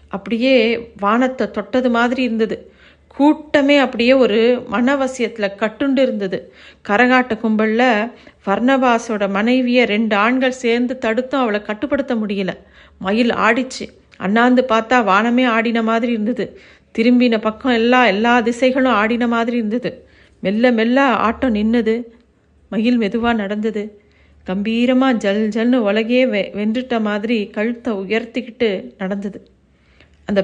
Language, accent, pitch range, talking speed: Tamil, native, 200-240 Hz, 105 wpm